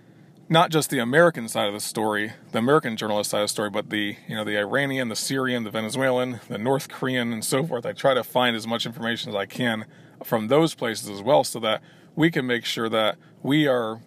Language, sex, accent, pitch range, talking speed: English, male, American, 115-140 Hz, 235 wpm